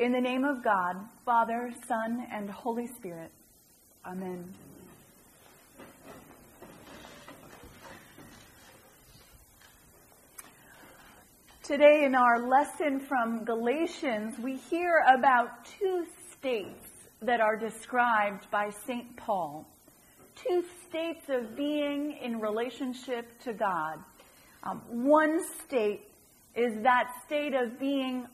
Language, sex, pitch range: English, female, 235-315 Hz